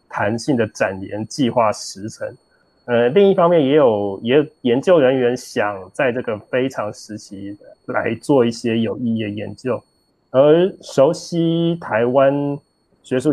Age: 20-39